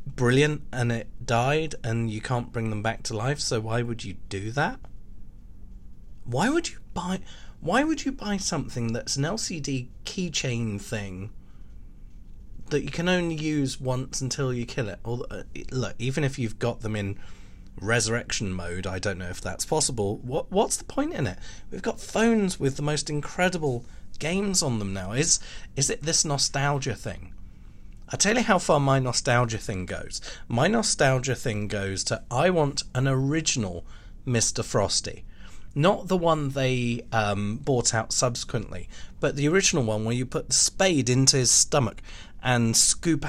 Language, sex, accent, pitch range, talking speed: English, male, British, 105-145 Hz, 170 wpm